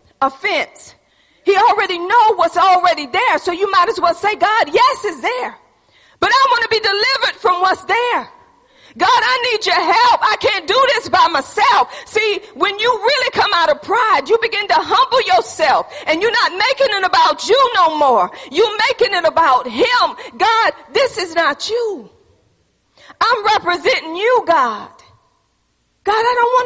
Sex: female